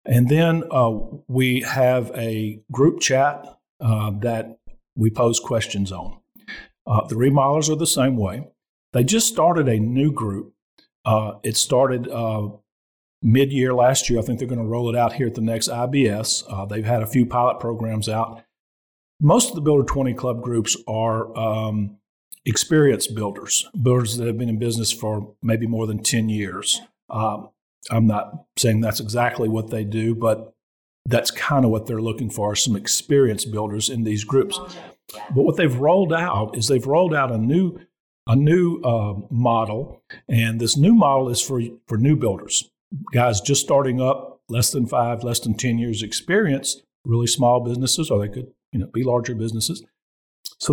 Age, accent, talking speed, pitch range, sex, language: 50-69, American, 175 wpm, 110-135 Hz, male, English